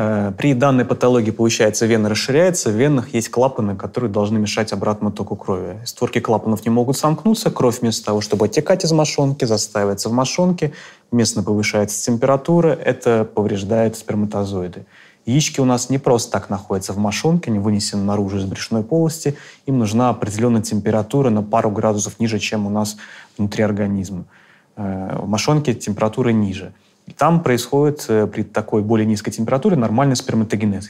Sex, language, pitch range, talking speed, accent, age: male, Russian, 105-130 Hz, 150 wpm, native, 20-39